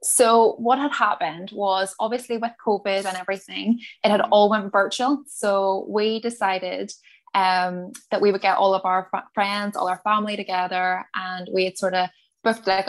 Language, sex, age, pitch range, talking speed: English, female, 10-29, 190-220 Hz, 175 wpm